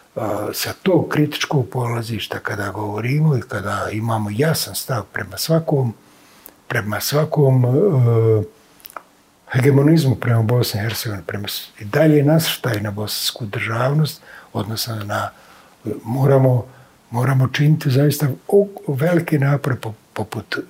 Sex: male